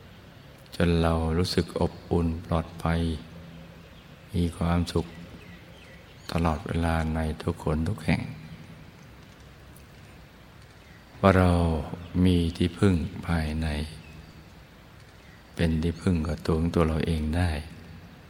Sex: male